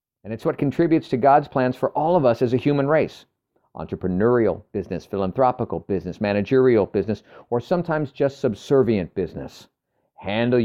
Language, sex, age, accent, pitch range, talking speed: English, male, 50-69, American, 110-140 Hz, 150 wpm